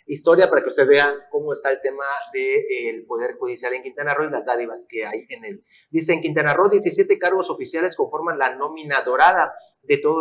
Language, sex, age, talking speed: Spanish, male, 40-59, 210 wpm